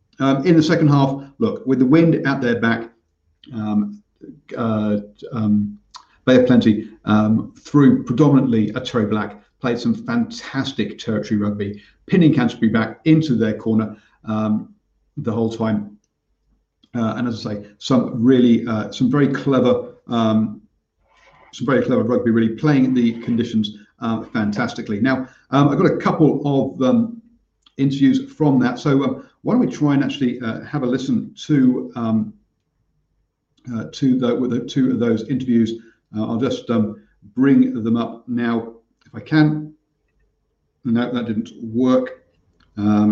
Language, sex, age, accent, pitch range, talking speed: English, male, 50-69, British, 110-130 Hz, 150 wpm